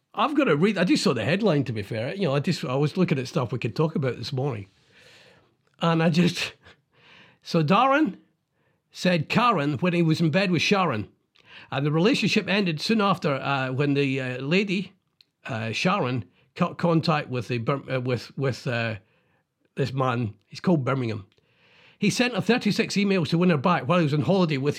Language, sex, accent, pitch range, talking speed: English, male, British, 135-185 Hz, 200 wpm